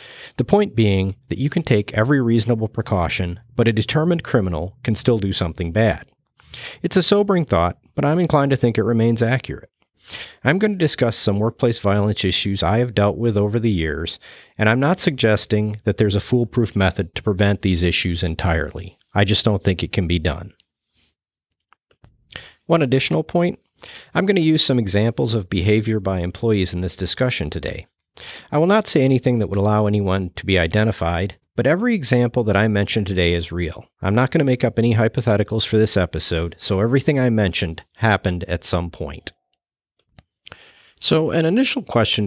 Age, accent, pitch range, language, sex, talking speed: 40-59, American, 95-125 Hz, English, male, 185 wpm